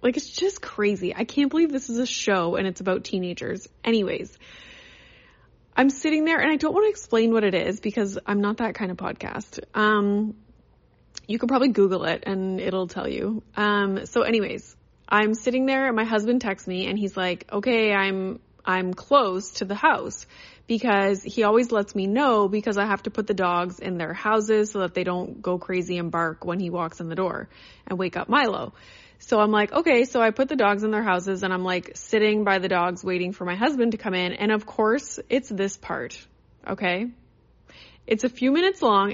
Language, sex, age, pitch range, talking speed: English, female, 20-39, 190-255 Hz, 210 wpm